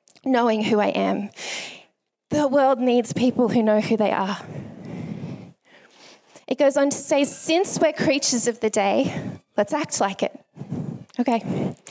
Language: English